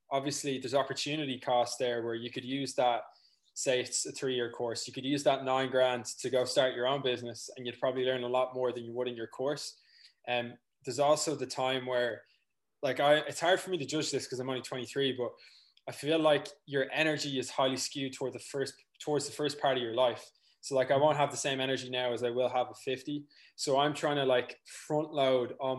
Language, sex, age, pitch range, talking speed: English, male, 20-39, 125-145 Hz, 235 wpm